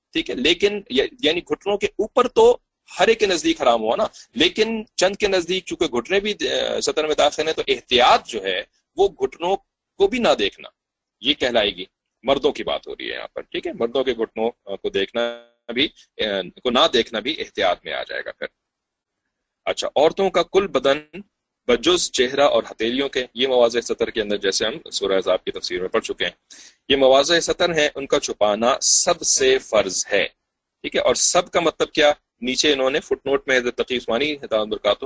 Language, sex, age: English, male, 40-59